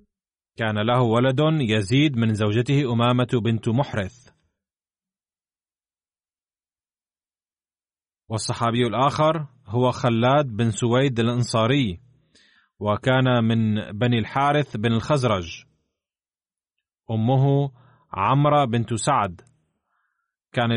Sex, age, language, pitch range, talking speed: male, 30-49, Arabic, 115-140 Hz, 80 wpm